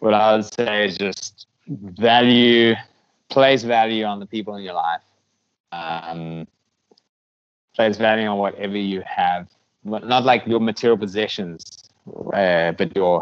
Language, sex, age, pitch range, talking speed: English, male, 20-39, 95-115 Hz, 135 wpm